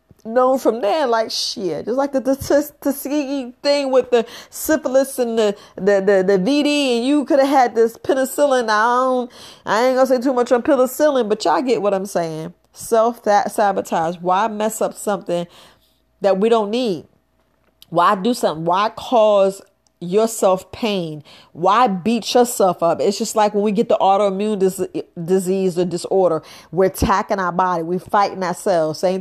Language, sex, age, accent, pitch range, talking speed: English, female, 30-49, American, 185-235 Hz, 170 wpm